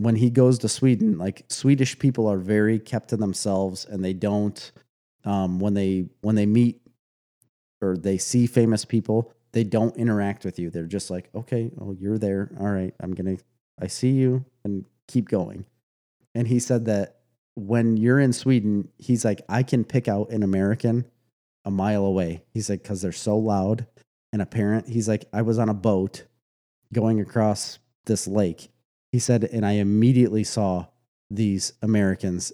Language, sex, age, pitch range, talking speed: English, male, 30-49, 100-125 Hz, 180 wpm